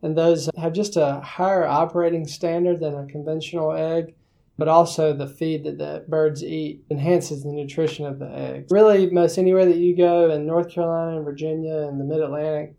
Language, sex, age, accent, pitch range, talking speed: English, male, 20-39, American, 145-165 Hz, 190 wpm